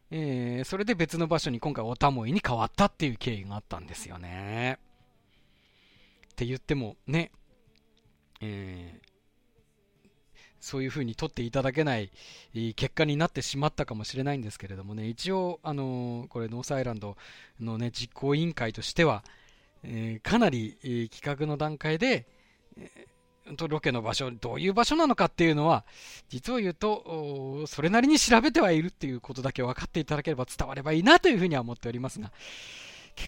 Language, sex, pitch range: Japanese, male, 110-155 Hz